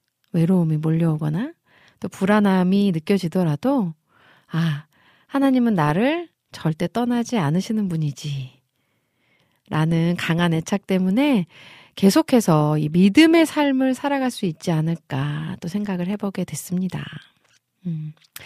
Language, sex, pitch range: Korean, female, 160-245 Hz